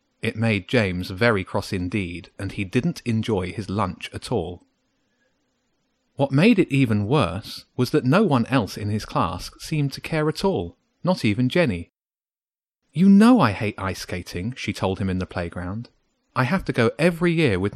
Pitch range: 100-135 Hz